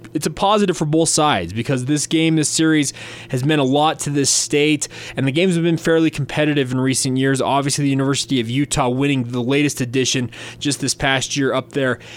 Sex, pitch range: male, 125-150 Hz